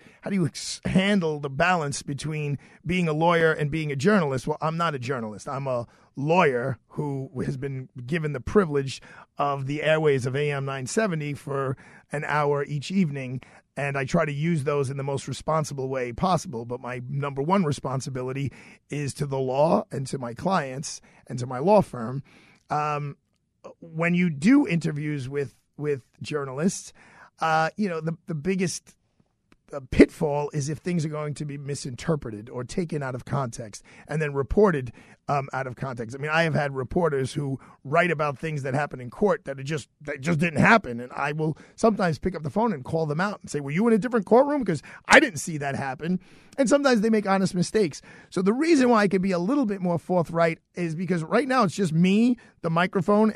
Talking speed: 200 wpm